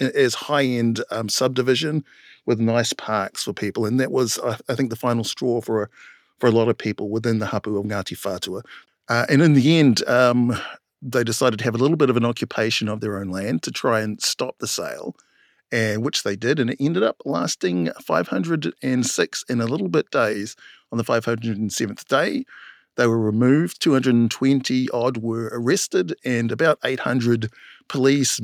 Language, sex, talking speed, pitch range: English, male, 190 wpm, 110-130 Hz